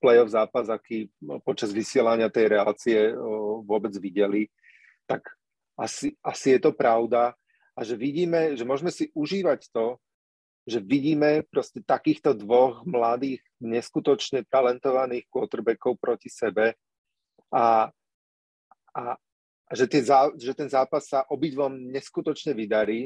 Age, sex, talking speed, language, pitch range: 40-59, male, 115 wpm, Slovak, 115-145 Hz